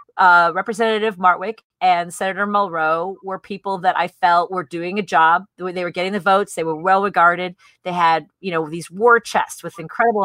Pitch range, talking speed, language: 170-210 Hz, 195 wpm, English